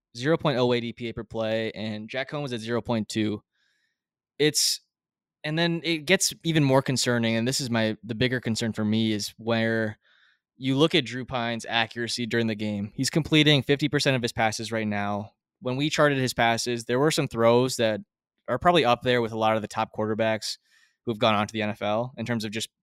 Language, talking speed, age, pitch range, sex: English, 220 wpm, 20-39, 110-130 Hz, male